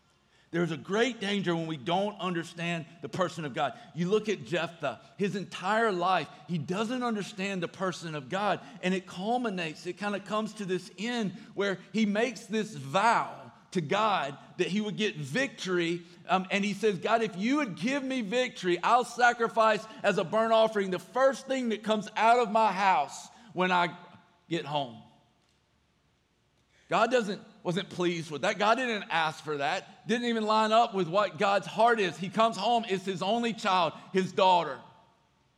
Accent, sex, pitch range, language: American, male, 180-225 Hz, English